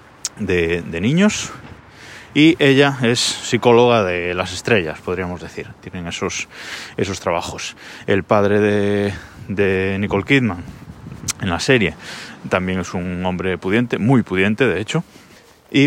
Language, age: Spanish, 20-39